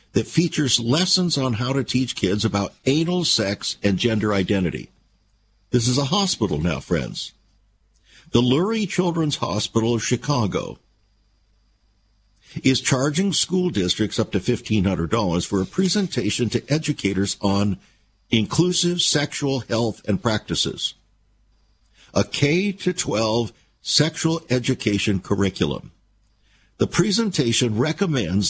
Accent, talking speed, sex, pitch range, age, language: American, 110 wpm, male, 100-145 Hz, 60-79, English